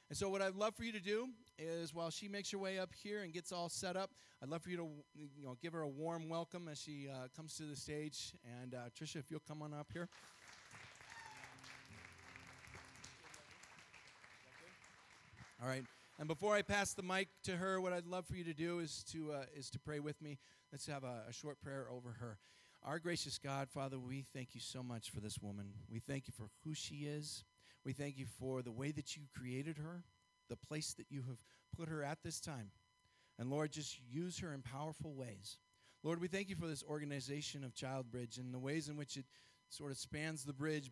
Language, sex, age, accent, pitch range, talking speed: English, male, 40-59, American, 125-160 Hz, 220 wpm